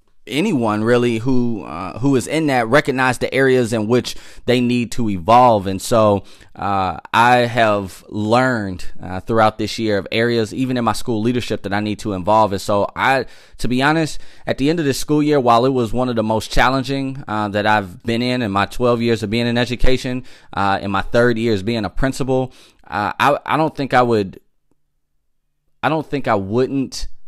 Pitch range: 100-125 Hz